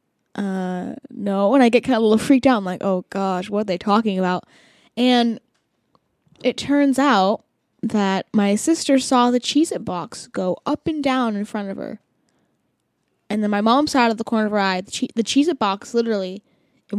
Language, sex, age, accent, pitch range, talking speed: English, female, 10-29, American, 205-280 Hz, 210 wpm